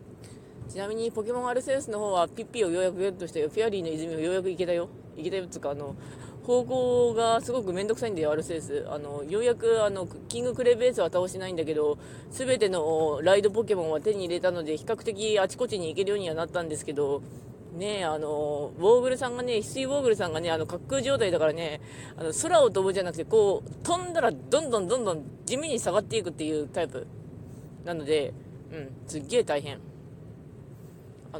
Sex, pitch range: female, 150-225 Hz